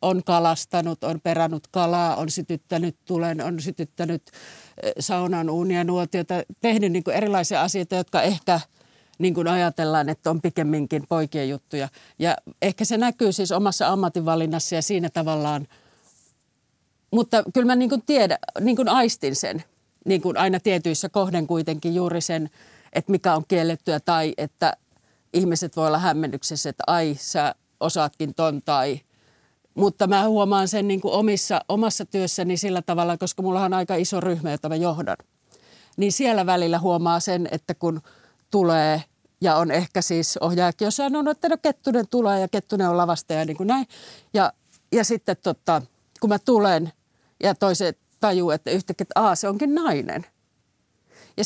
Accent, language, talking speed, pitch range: native, Finnish, 145 wpm, 165-200 Hz